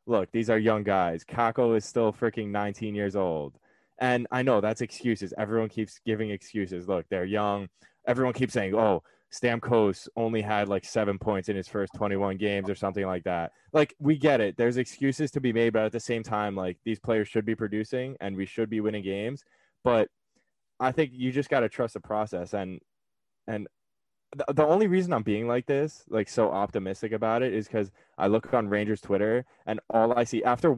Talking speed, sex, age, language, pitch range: 205 wpm, male, 10-29, English, 110-155 Hz